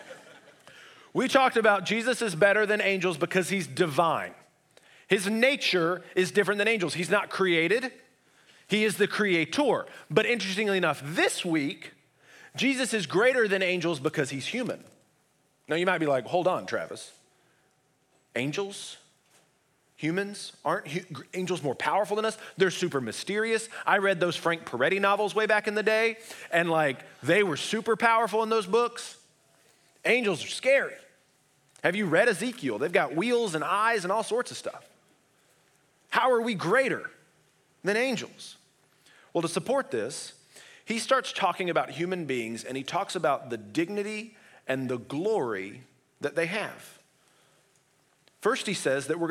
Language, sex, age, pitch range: English, male, 30-49, 155-220 Hz